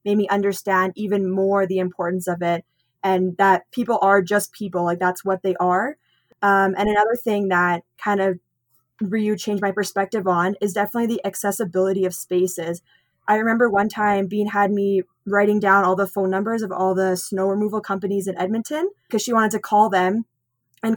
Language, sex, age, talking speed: English, female, 10-29, 190 wpm